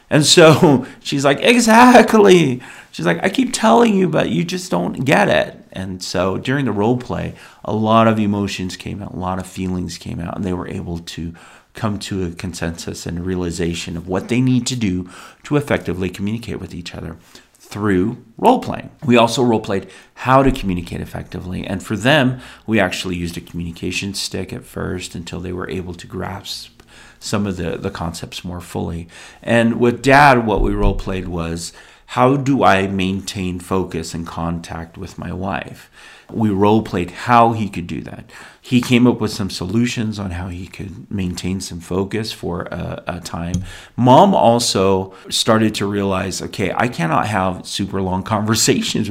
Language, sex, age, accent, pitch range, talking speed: English, male, 40-59, American, 90-115 Hz, 180 wpm